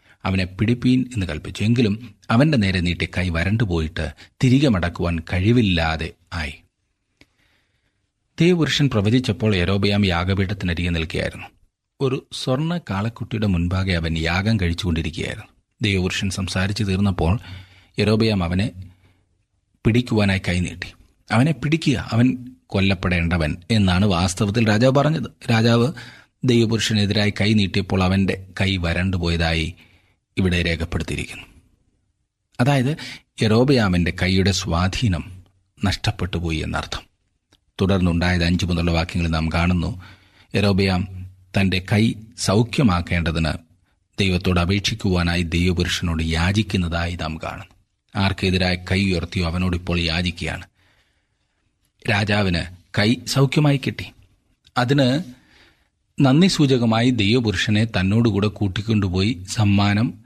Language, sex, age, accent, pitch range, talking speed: Malayalam, male, 30-49, native, 90-110 Hz, 85 wpm